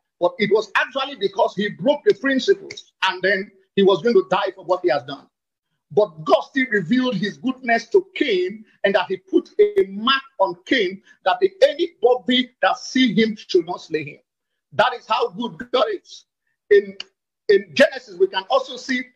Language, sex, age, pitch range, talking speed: English, male, 50-69, 200-335 Hz, 185 wpm